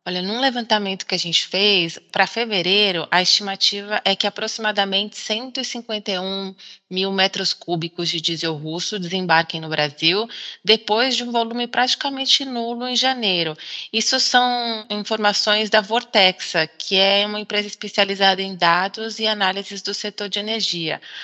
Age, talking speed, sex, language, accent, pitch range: 20-39, 140 wpm, female, English, Brazilian, 175-220 Hz